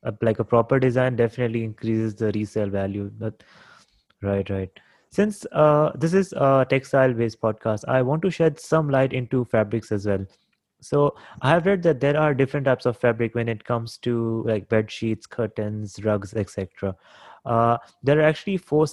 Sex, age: male, 20-39